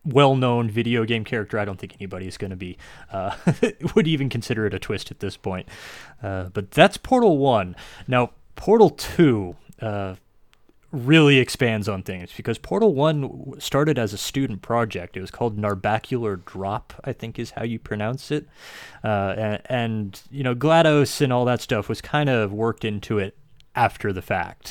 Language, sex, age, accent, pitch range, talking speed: English, male, 20-39, American, 100-130 Hz, 175 wpm